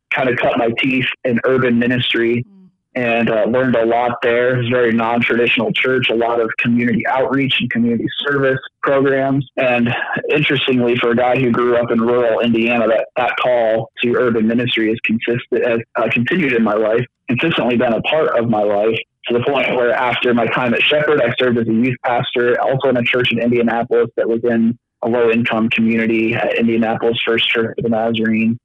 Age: 30-49